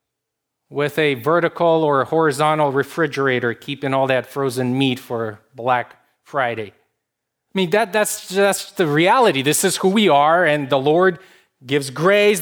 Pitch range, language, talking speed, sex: 120-150 Hz, English, 155 wpm, male